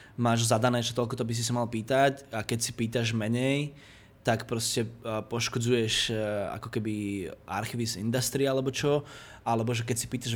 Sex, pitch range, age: male, 115-130 Hz, 20-39